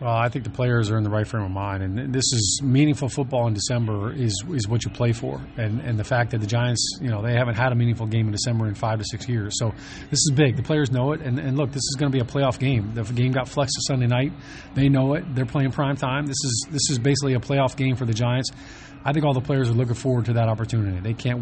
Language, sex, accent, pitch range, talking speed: English, male, American, 115-135 Hz, 290 wpm